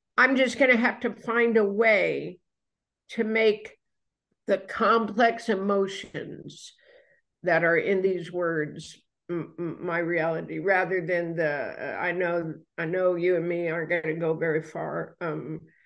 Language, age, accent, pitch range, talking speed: English, 50-69, American, 185-235 Hz, 155 wpm